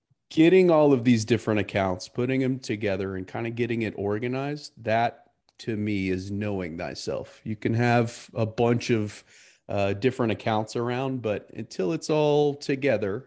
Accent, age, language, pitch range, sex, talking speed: American, 30-49, English, 100-120 Hz, male, 165 wpm